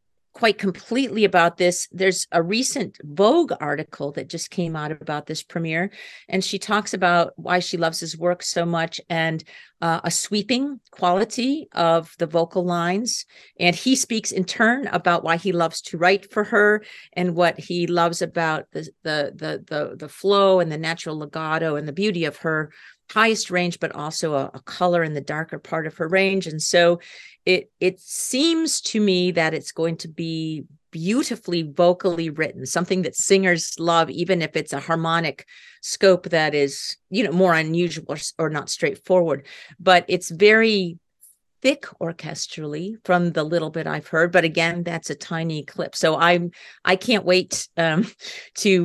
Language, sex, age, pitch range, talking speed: English, female, 50-69, 160-190 Hz, 175 wpm